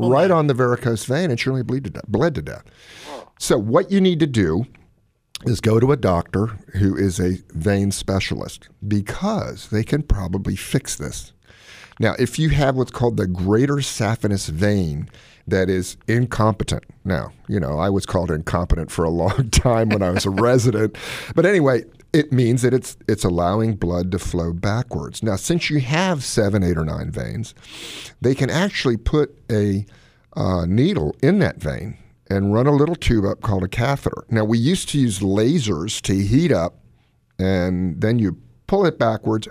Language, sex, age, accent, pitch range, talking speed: English, male, 50-69, American, 95-125 Hz, 175 wpm